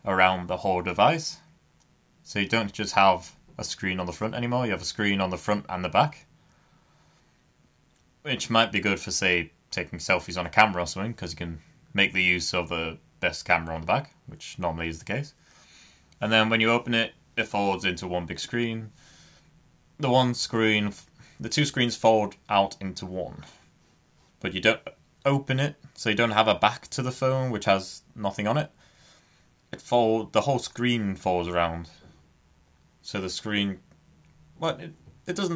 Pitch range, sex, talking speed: 90-120 Hz, male, 185 wpm